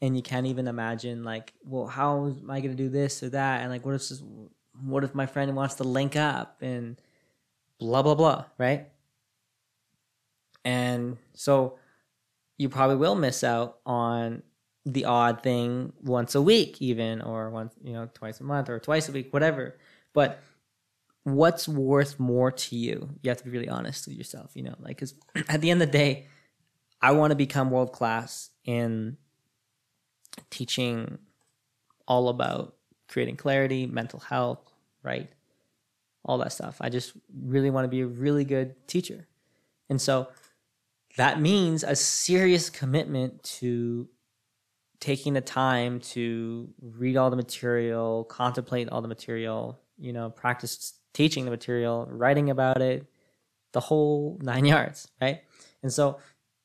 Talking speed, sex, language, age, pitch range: 160 wpm, male, English, 20-39, 120-140 Hz